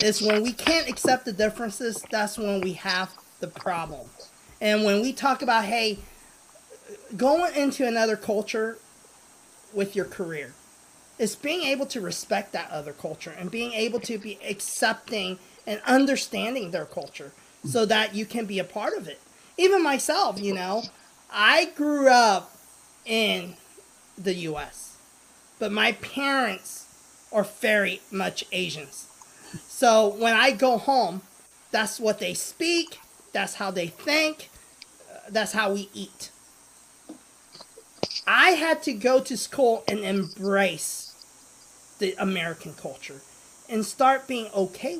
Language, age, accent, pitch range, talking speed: English, 30-49, American, 200-265 Hz, 135 wpm